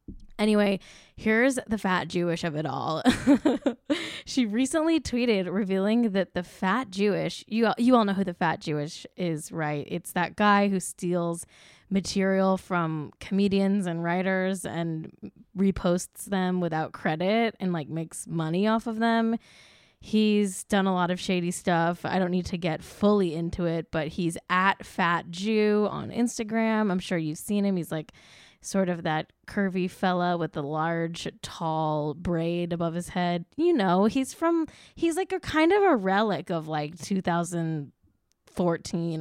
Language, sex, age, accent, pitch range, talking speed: English, female, 10-29, American, 170-215 Hz, 160 wpm